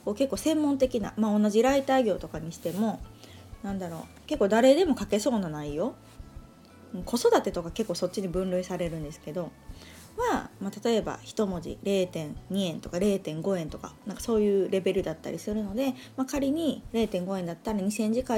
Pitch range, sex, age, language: 180-260 Hz, female, 20-39, Japanese